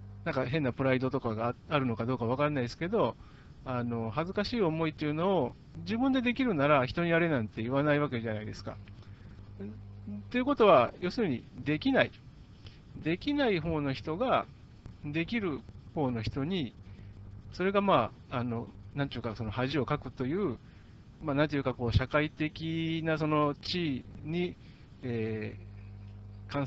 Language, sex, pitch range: Japanese, male, 115-165 Hz